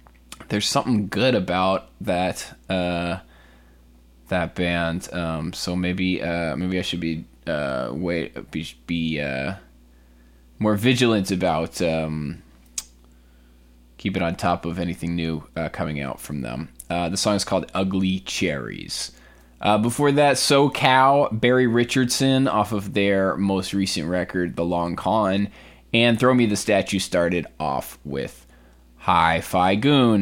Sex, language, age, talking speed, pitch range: male, English, 20-39, 135 wpm, 75-120 Hz